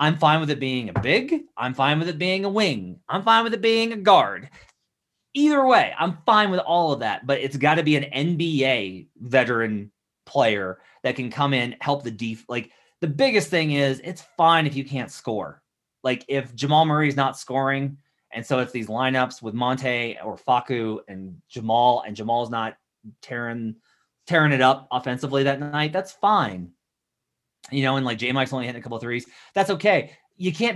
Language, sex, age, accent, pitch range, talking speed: English, male, 30-49, American, 120-155 Hz, 195 wpm